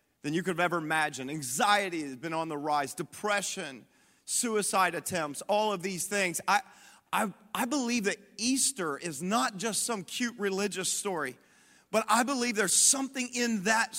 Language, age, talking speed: English, 30-49, 165 wpm